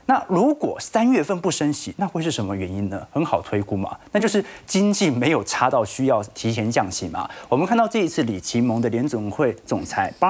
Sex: male